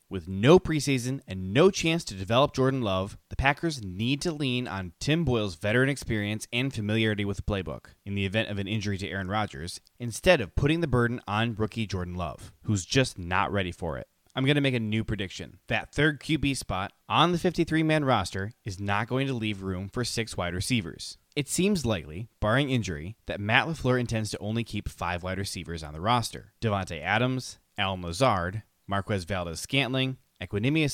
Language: English